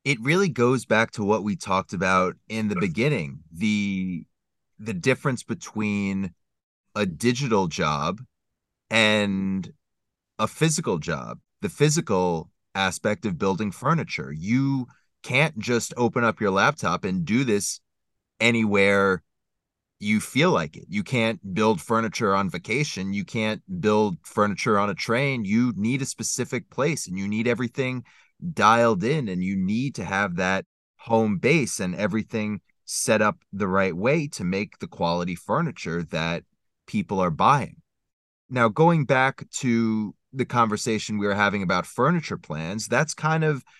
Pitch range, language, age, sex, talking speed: 100-130 Hz, English, 30-49, male, 145 wpm